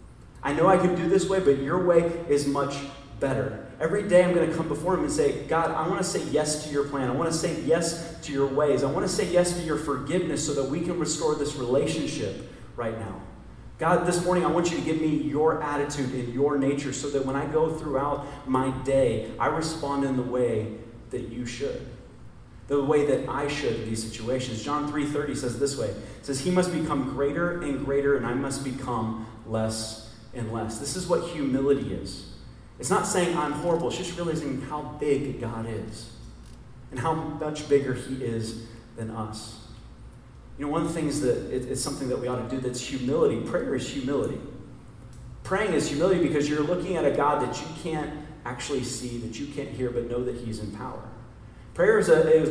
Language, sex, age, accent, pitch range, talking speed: English, male, 30-49, American, 125-160 Hz, 215 wpm